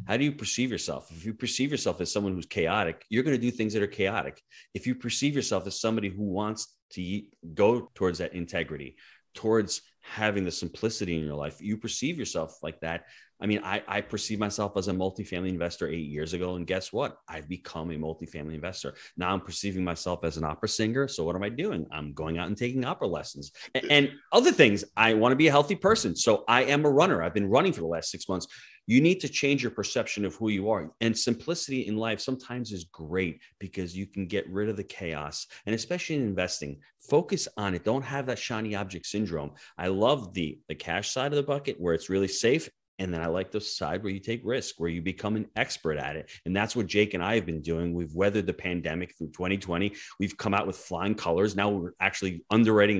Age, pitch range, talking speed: 30-49, 85-110 Hz, 230 wpm